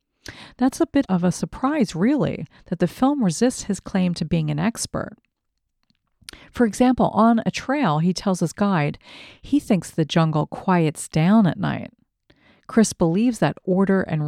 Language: English